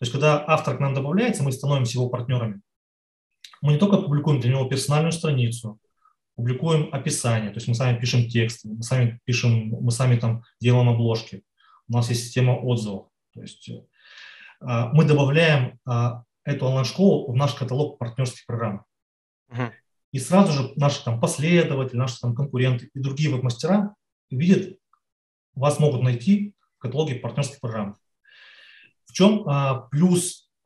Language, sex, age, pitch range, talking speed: Russian, male, 30-49, 120-145 Hz, 135 wpm